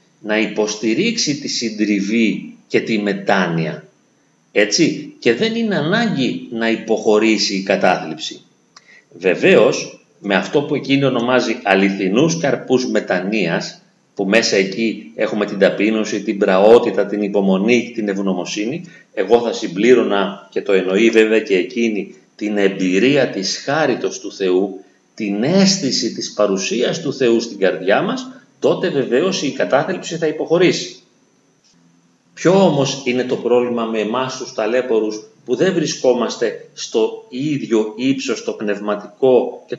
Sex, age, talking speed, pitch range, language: male, 30-49, 130 wpm, 105-155 Hz, Greek